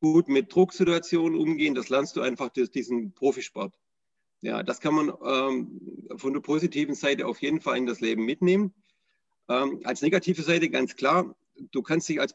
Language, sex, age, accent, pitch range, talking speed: German, male, 40-59, German, 130-180 Hz, 180 wpm